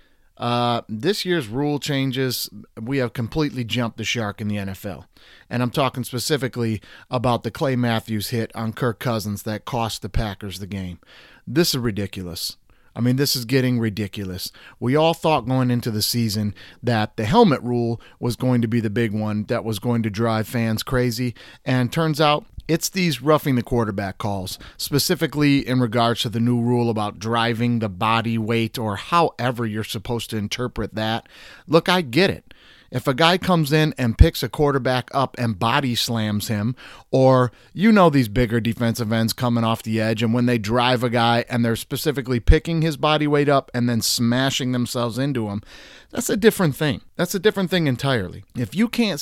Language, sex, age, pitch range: English, male, 30-49, 115-140 Hz